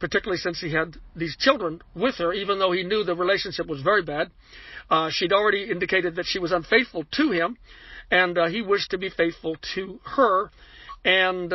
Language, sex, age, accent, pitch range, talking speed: English, male, 60-79, American, 165-200 Hz, 190 wpm